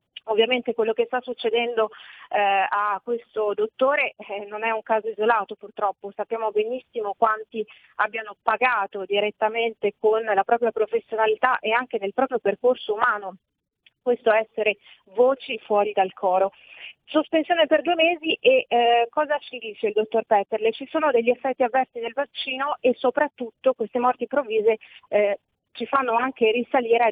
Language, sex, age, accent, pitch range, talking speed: Italian, female, 30-49, native, 210-255 Hz, 150 wpm